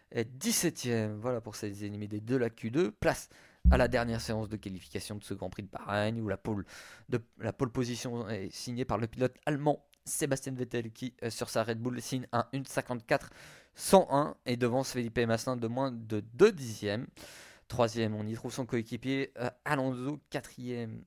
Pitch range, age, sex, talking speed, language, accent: 110-130 Hz, 20-39, male, 180 wpm, French, French